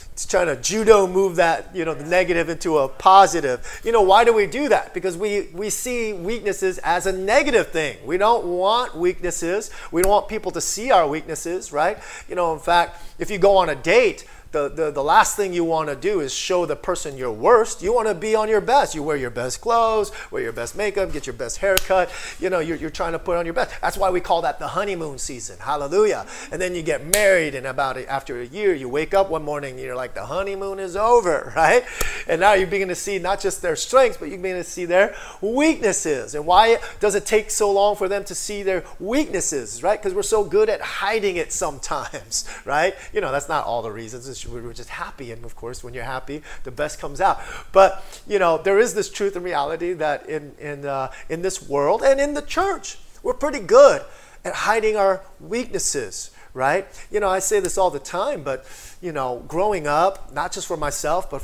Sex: male